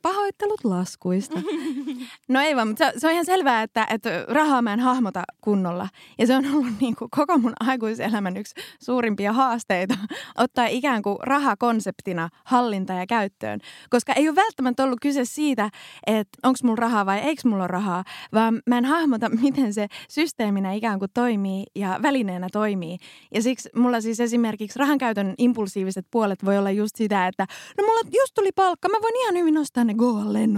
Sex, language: female, Finnish